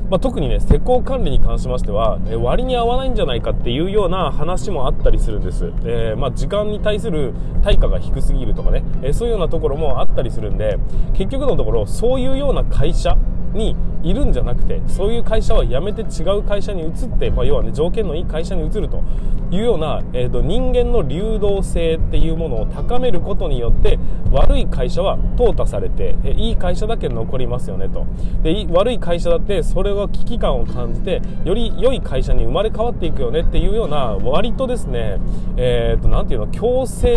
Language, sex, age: Japanese, male, 20-39